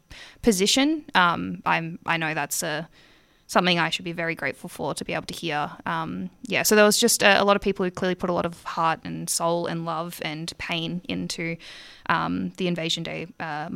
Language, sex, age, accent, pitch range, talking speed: English, female, 20-39, Australian, 165-215 Hz, 215 wpm